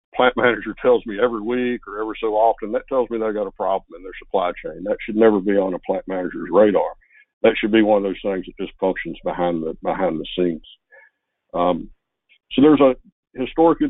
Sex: male